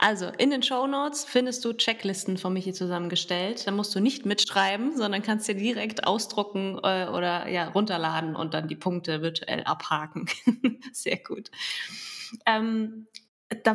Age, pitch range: 20-39, 180-225 Hz